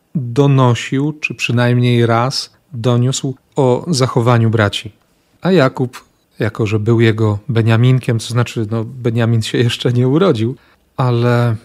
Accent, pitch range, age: native, 110-135 Hz, 40-59